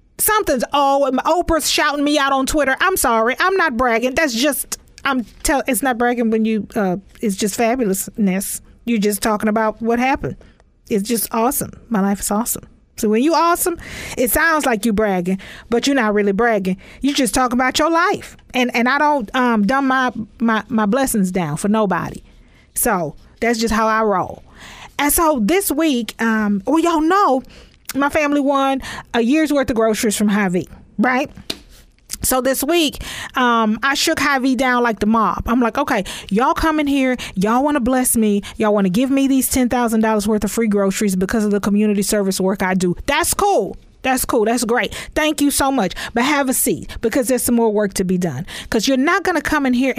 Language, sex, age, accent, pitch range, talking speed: English, female, 40-59, American, 215-280 Hz, 205 wpm